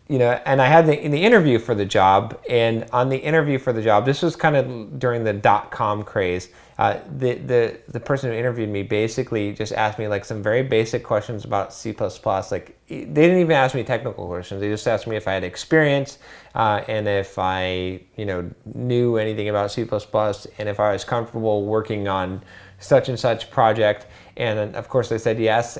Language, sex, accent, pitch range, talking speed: English, male, American, 105-130 Hz, 215 wpm